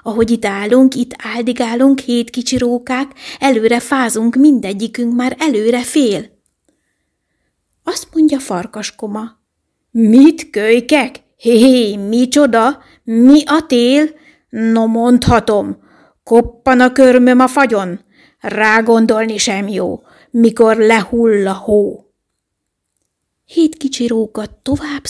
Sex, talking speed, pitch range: female, 105 wpm, 230-290 Hz